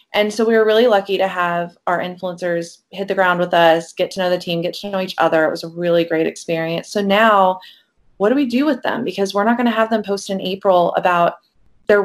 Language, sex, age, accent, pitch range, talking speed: English, female, 20-39, American, 170-205 Hz, 255 wpm